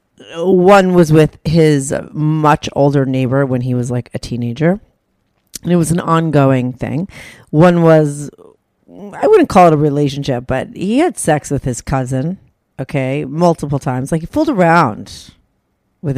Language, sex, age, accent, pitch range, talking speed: English, female, 40-59, American, 135-170 Hz, 155 wpm